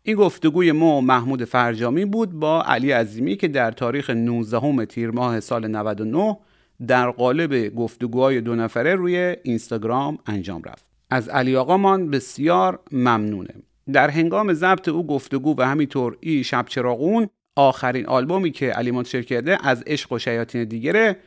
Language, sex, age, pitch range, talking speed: Persian, male, 40-59, 125-160 Hz, 145 wpm